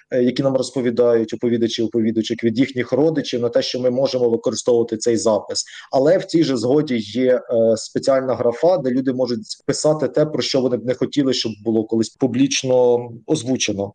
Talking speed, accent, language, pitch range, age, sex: 175 wpm, native, Ukrainian, 120-145 Hz, 30-49, male